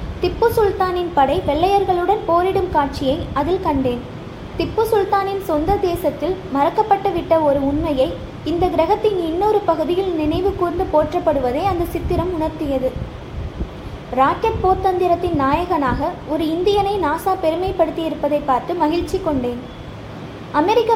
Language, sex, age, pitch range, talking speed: Tamil, female, 20-39, 300-380 Hz, 105 wpm